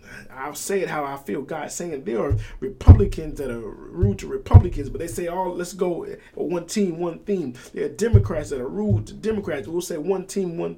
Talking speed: 225 wpm